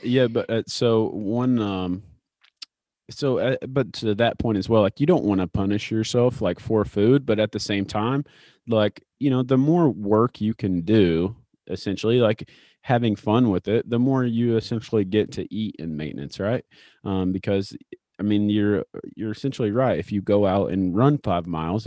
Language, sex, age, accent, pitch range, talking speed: English, male, 30-49, American, 95-115 Hz, 190 wpm